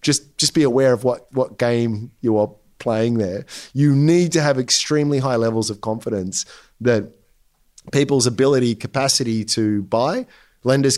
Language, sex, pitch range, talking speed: English, male, 115-145 Hz, 155 wpm